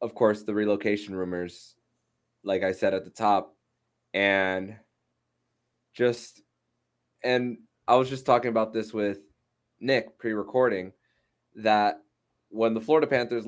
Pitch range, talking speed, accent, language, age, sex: 100-120 Hz, 125 wpm, American, English, 20-39, male